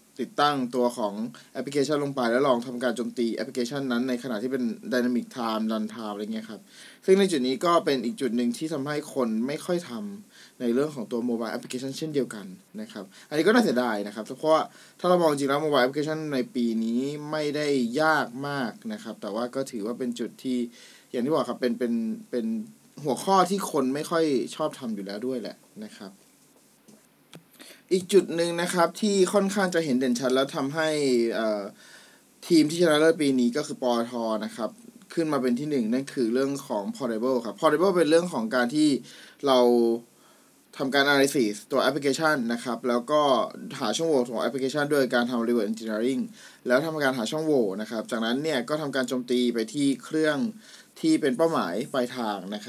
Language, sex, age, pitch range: Thai, male, 20-39, 120-165 Hz